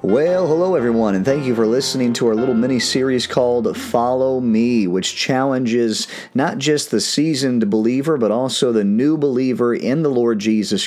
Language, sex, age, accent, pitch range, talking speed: English, male, 40-59, American, 105-140 Hz, 170 wpm